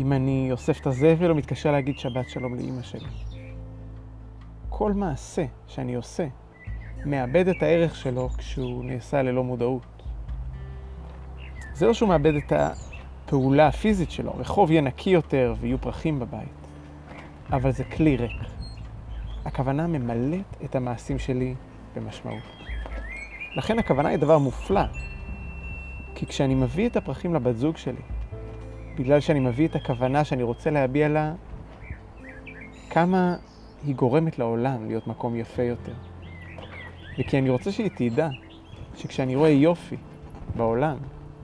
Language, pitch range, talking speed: Hebrew, 105-145 Hz, 125 wpm